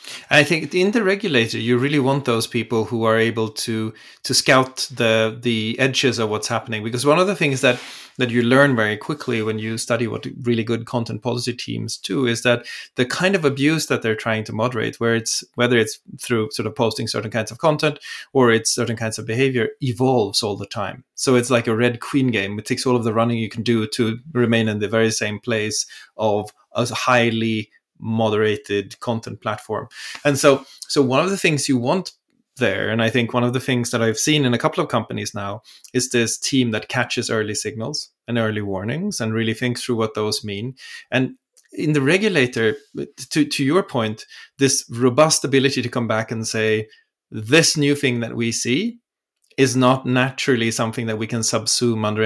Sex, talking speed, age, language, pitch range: male, 205 wpm, 30-49, English, 110-130 Hz